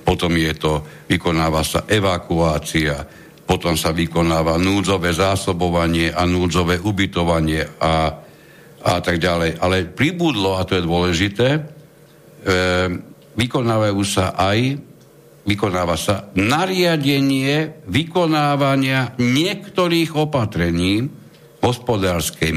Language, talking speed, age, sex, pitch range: Slovak, 90 wpm, 60-79, male, 85-120 Hz